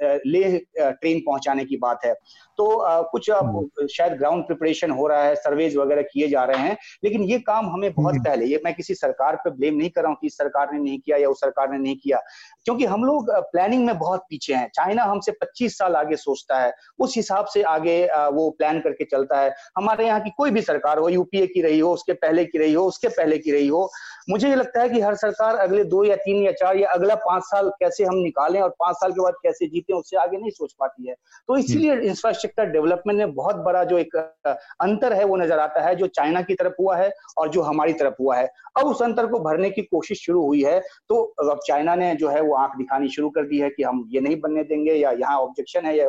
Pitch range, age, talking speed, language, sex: 150-215 Hz, 30-49, 160 wpm, Hindi, male